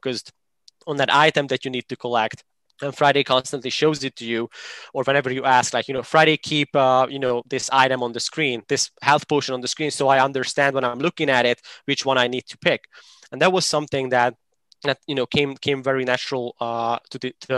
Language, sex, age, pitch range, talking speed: English, male, 20-39, 125-140 Hz, 235 wpm